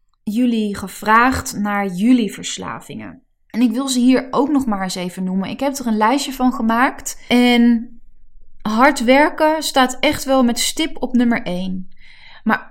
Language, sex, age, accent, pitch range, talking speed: Dutch, female, 20-39, Dutch, 195-250 Hz, 165 wpm